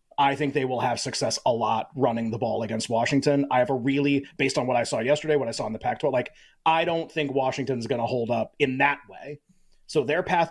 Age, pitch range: 30-49, 130-155 Hz